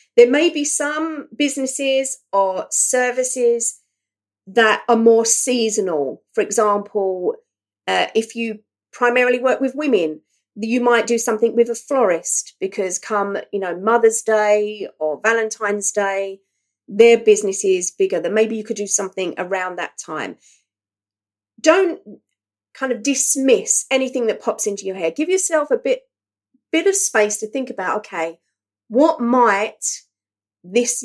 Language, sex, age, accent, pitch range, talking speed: English, female, 40-59, British, 195-265 Hz, 140 wpm